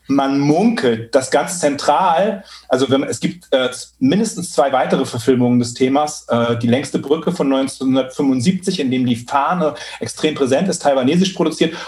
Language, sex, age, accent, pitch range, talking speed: German, male, 40-59, German, 135-165 Hz, 150 wpm